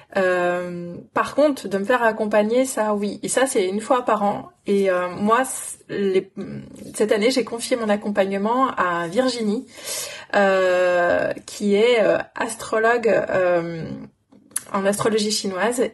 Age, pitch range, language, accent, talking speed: 30-49, 185-240 Hz, French, French, 140 wpm